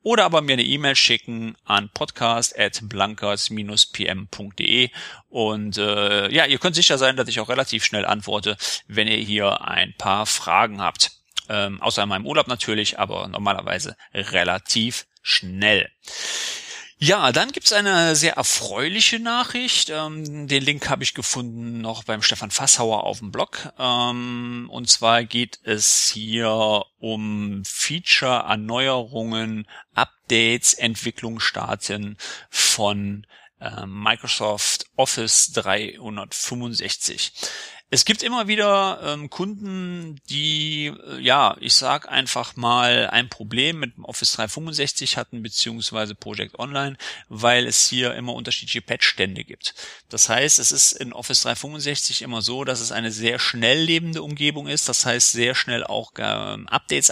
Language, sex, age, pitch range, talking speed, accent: German, male, 40-59, 110-140 Hz, 135 wpm, German